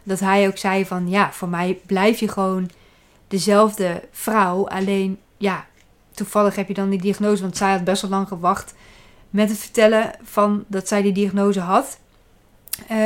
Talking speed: 170 wpm